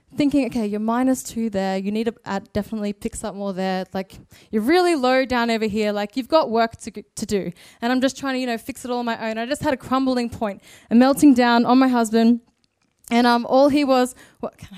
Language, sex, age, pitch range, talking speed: English, female, 20-39, 205-250 Hz, 245 wpm